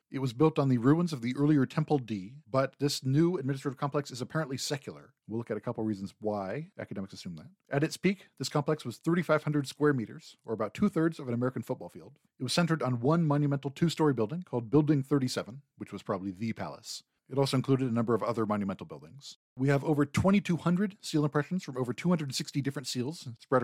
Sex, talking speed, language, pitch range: male, 210 wpm, English, 115-150 Hz